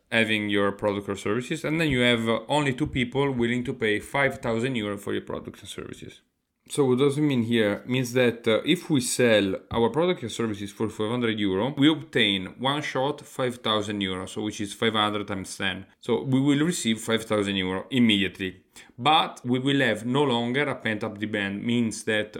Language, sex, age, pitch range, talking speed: English, male, 30-49, 105-140 Hz, 180 wpm